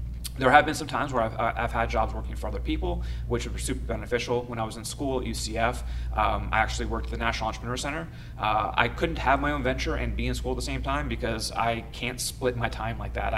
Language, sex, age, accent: English, male, 30-49, American